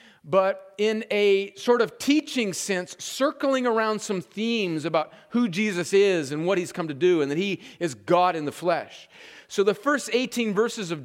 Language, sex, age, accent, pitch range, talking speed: English, male, 40-59, American, 150-200 Hz, 190 wpm